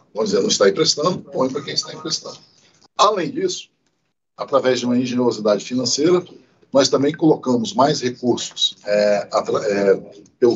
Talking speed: 130 wpm